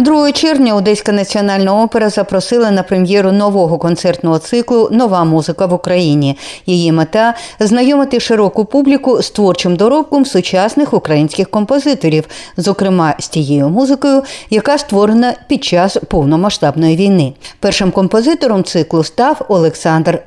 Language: Ukrainian